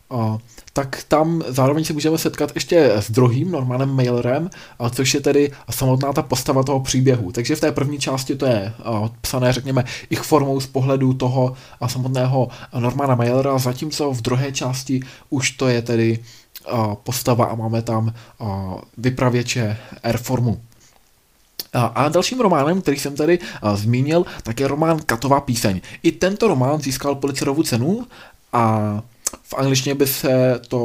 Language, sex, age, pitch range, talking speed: Czech, male, 20-39, 120-140 Hz, 145 wpm